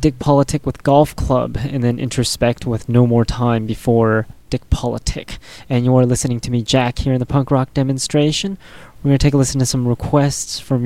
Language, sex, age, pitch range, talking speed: English, male, 20-39, 120-135 Hz, 210 wpm